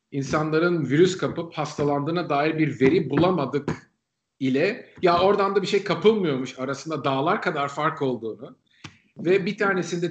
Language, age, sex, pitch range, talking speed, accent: Turkish, 50-69, male, 130-175 Hz, 135 wpm, native